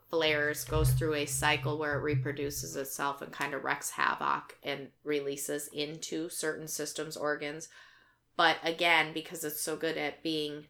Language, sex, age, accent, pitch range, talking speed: English, female, 30-49, American, 150-170 Hz, 155 wpm